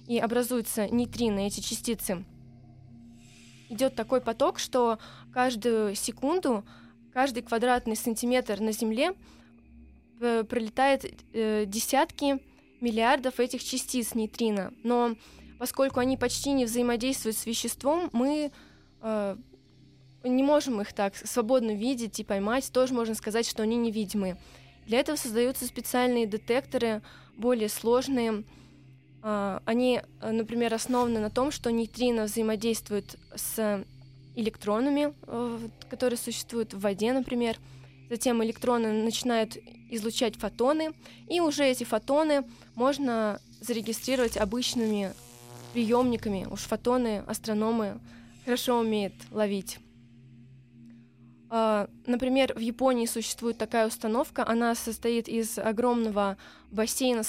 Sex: female